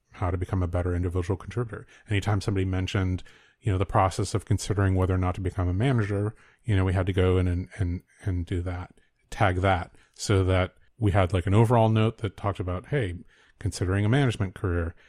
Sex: male